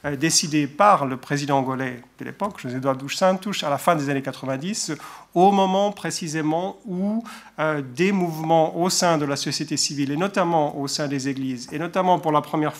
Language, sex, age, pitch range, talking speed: French, male, 40-59, 140-170 Hz, 180 wpm